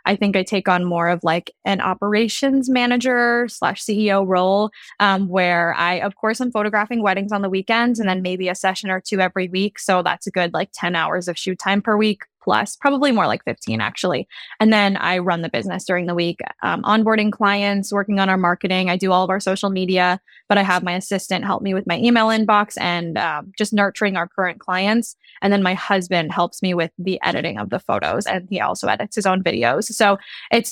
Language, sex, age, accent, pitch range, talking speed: English, female, 10-29, American, 180-210 Hz, 225 wpm